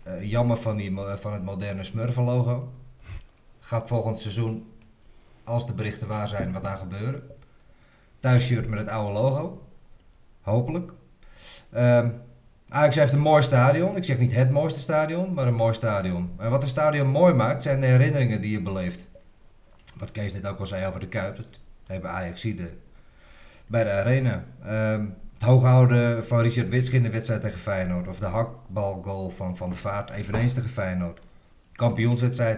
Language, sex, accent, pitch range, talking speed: Dutch, male, Dutch, 105-125 Hz, 170 wpm